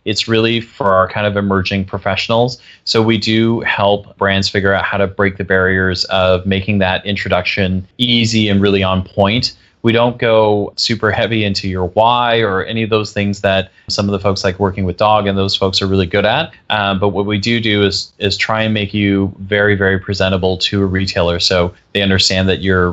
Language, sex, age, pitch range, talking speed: English, male, 20-39, 95-115 Hz, 210 wpm